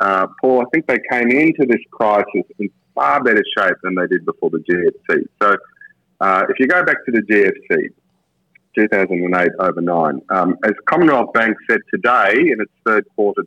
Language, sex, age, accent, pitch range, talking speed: English, male, 30-49, Australian, 100-150 Hz, 185 wpm